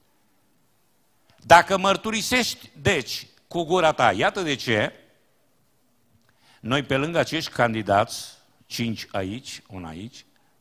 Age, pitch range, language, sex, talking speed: 50-69, 120-205 Hz, Romanian, male, 100 wpm